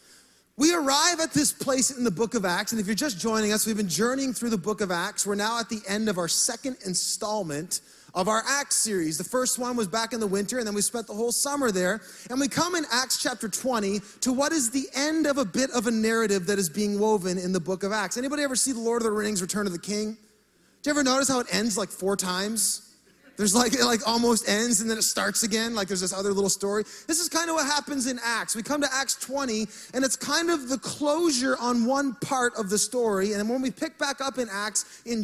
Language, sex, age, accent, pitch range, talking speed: English, male, 30-49, American, 205-265 Hz, 260 wpm